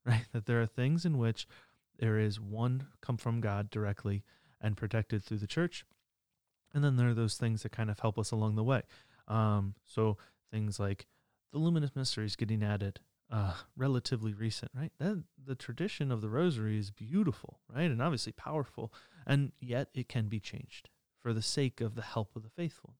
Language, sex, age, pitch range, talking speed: English, male, 30-49, 110-130 Hz, 190 wpm